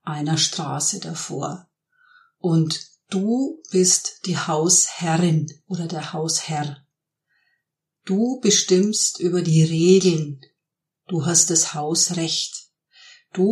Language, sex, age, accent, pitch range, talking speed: German, female, 50-69, German, 160-190 Hz, 95 wpm